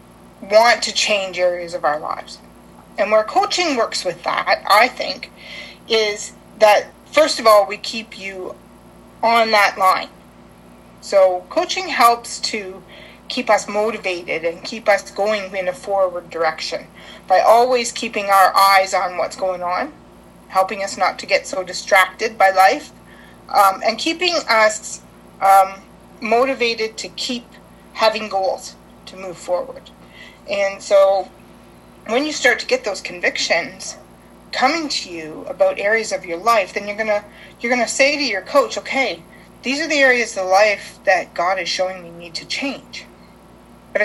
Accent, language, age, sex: American, English, 30-49, female